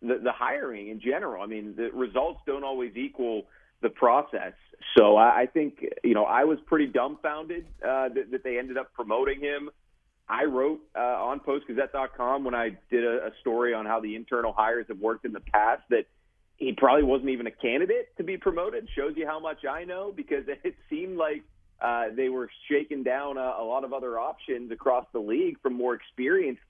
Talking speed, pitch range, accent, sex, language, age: 200 wpm, 120-160 Hz, American, male, English, 40-59